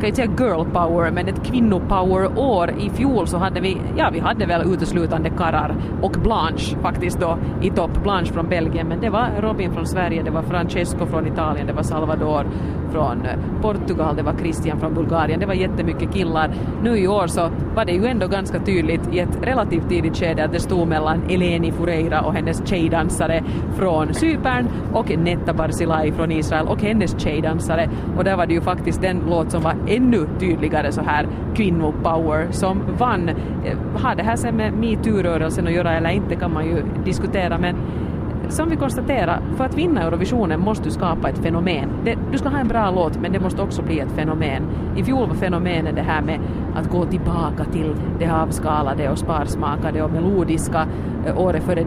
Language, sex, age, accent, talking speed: Finnish, female, 30-49, native, 190 wpm